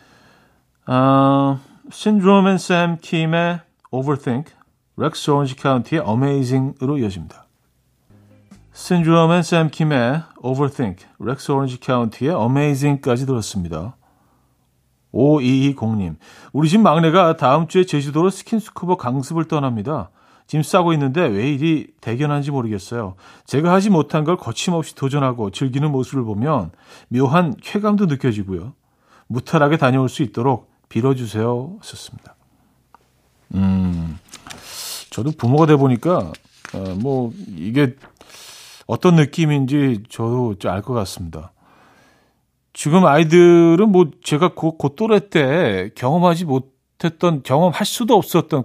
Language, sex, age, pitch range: Korean, male, 40-59, 125-165 Hz